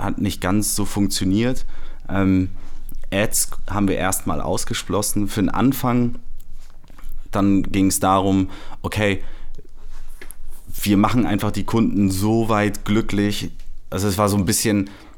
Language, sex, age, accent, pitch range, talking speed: German, male, 30-49, German, 90-110 Hz, 130 wpm